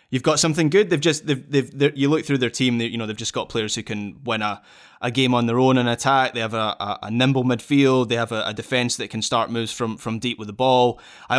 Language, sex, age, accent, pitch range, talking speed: English, male, 20-39, British, 115-140 Hz, 280 wpm